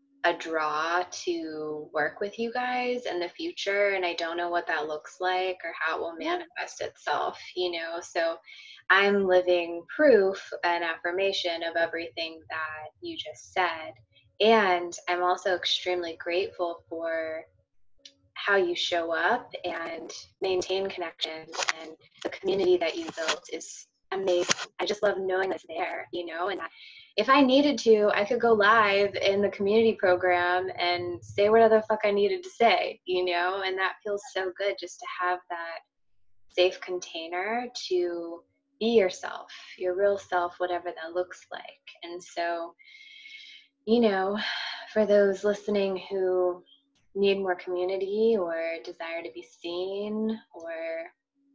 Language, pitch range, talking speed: English, 170-220 Hz, 150 wpm